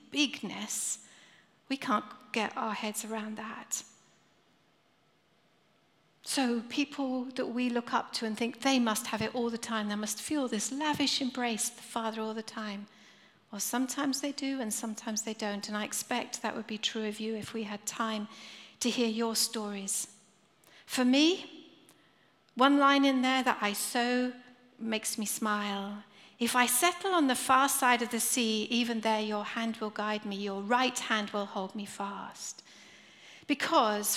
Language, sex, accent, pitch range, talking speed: English, female, British, 215-255 Hz, 170 wpm